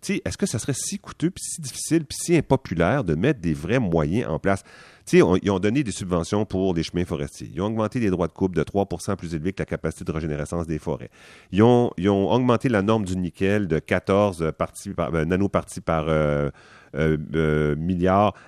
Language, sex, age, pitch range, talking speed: French, male, 40-59, 90-115 Hz, 220 wpm